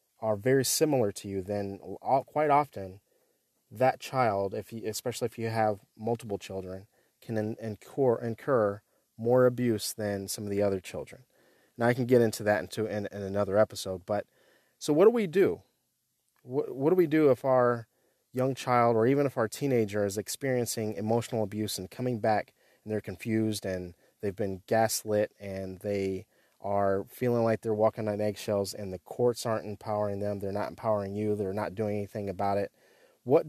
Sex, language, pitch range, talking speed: male, English, 105-125 Hz, 180 wpm